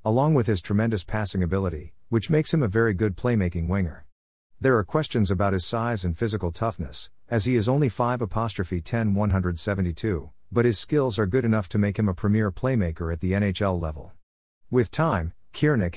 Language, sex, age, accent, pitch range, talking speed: English, male, 50-69, American, 90-115 Hz, 180 wpm